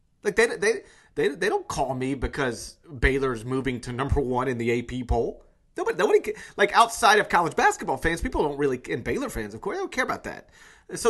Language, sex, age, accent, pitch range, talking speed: English, male, 30-49, American, 135-200 Hz, 220 wpm